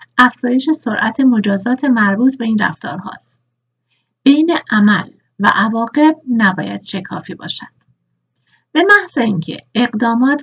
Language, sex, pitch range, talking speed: Persian, female, 190-260 Hz, 110 wpm